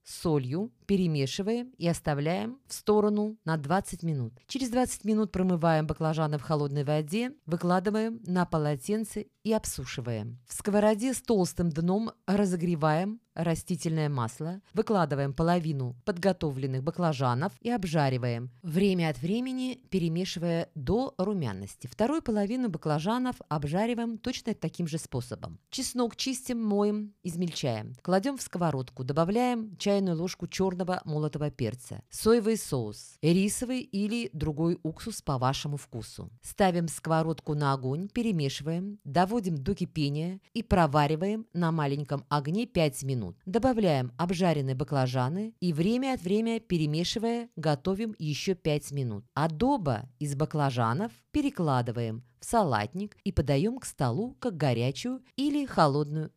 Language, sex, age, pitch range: Russian, female, 20-39, 140-210 Hz